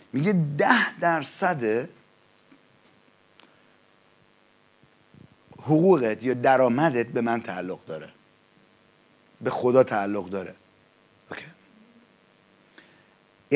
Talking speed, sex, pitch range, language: 65 wpm, male, 120-160 Hz, English